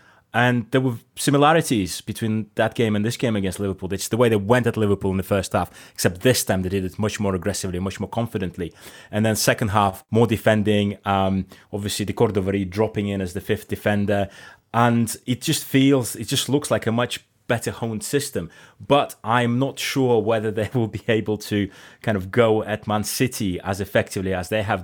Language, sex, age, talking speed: English, male, 20-39, 210 wpm